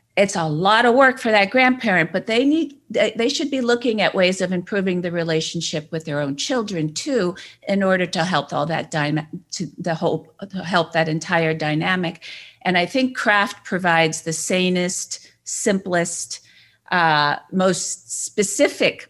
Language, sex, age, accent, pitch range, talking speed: English, female, 50-69, American, 155-185 Hz, 160 wpm